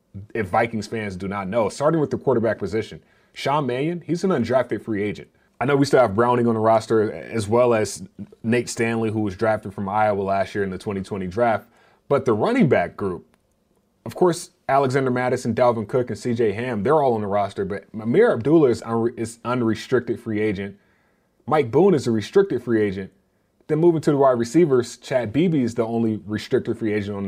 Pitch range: 105-135 Hz